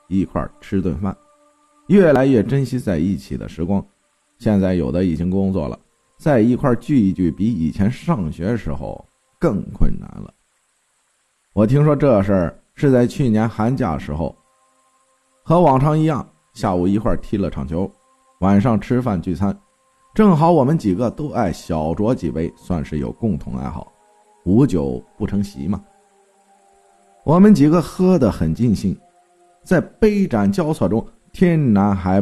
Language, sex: Chinese, male